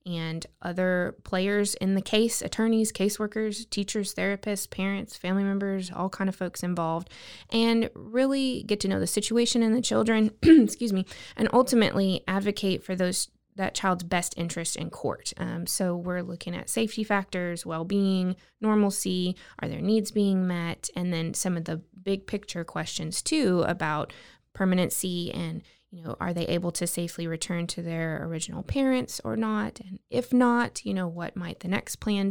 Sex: female